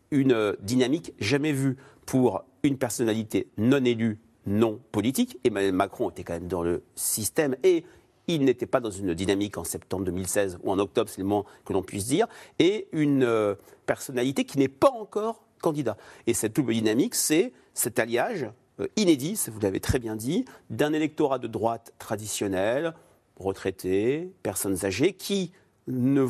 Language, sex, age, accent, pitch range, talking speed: French, male, 40-59, French, 105-150 Hz, 160 wpm